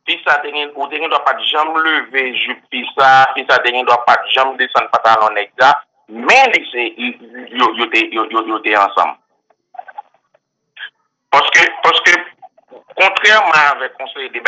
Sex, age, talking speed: male, 50-69, 75 wpm